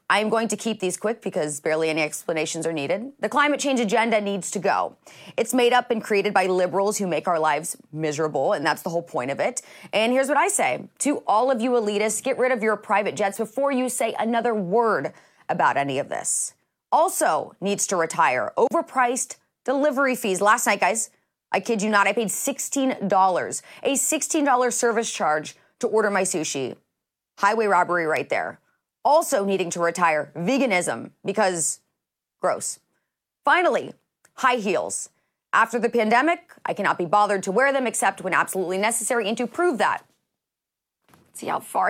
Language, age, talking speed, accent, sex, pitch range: English, 30-49, 180 wpm, American, female, 185-260 Hz